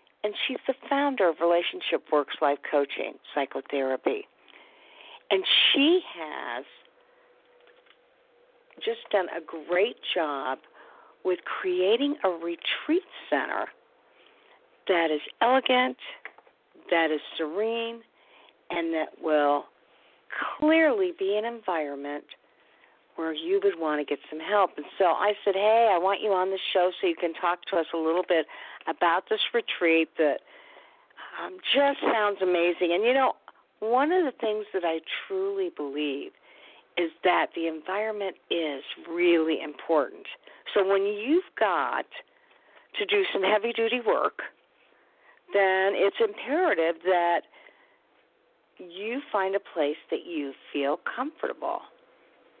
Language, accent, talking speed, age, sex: English, American, 125 wpm, 50-69, female